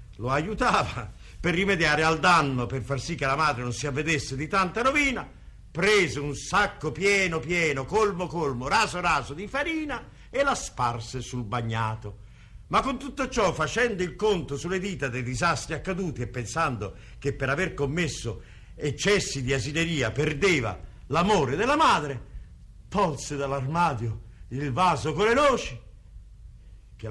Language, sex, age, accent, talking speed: Italian, male, 50-69, native, 150 wpm